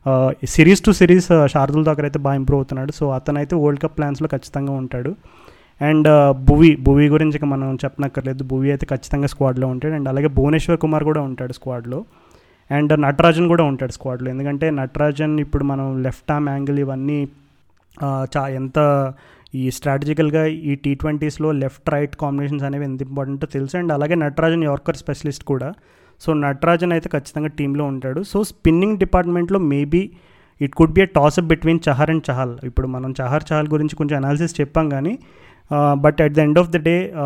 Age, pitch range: 30-49, 140-160 Hz